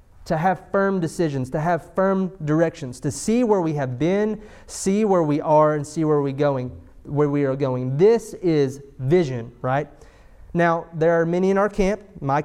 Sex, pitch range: male, 140-185 Hz